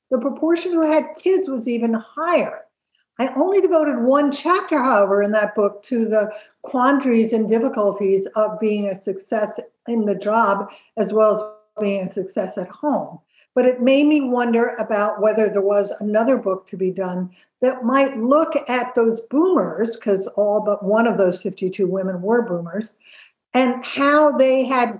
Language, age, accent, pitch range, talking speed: English, 60-79, American, 200-255 Hz, 170 wpm